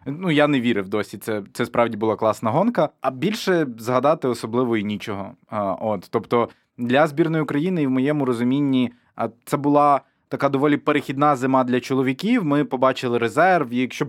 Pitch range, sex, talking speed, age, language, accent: 115-145 Hz, male, 170 wpm, 20-39, Ukrainian, native